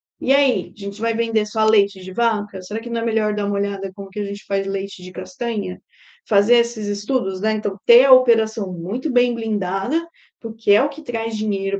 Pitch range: 200-255 Hz